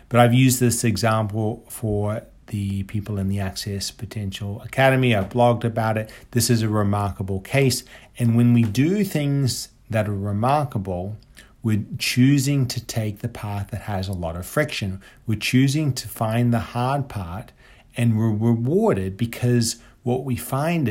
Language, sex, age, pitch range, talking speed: English, male, 40-59, 105-125 Hz, 160 wpm